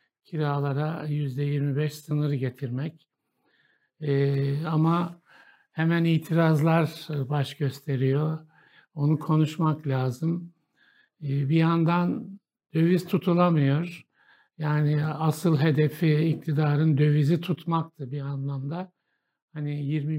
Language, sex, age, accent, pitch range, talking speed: Turkish, male, 60-79, native, 145-170 Hz, 90 wpm